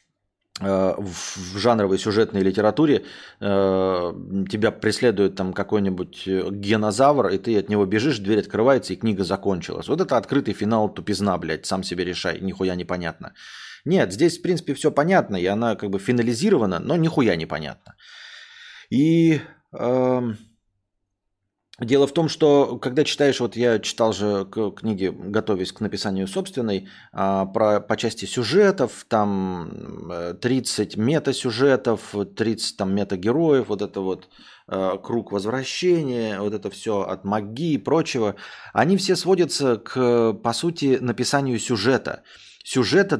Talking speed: 130 wpm